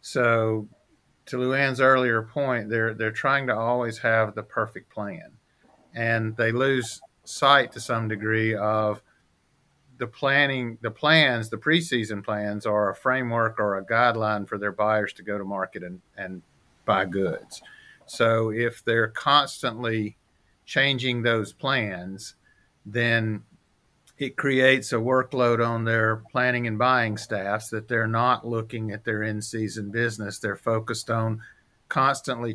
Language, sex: English, male